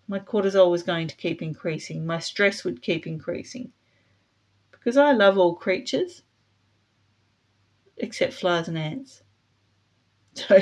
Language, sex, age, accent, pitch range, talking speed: English, female, 40-59, Australian, 150-215 Hz, 125 wpm